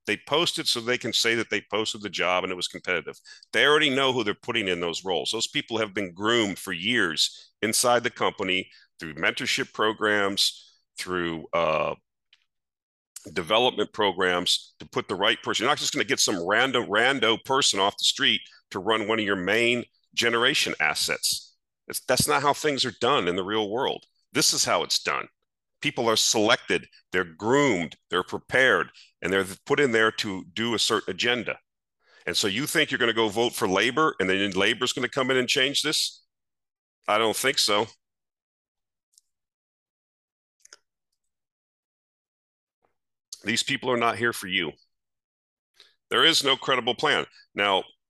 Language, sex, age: English, male, 40-59